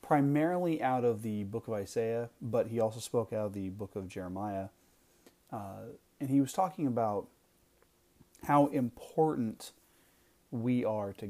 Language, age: English, 30-49